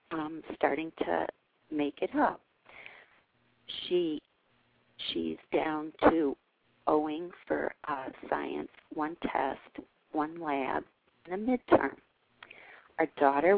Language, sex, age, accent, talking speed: English, female, 40-59, American, 100 wpm